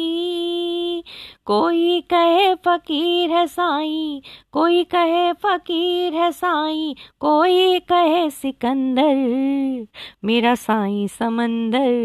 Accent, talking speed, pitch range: native, 80 wpm, 235-335 Hz